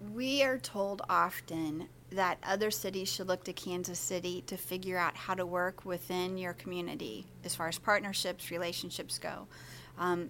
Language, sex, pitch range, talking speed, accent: English, female, 175-195 Hz, 165 wpm, American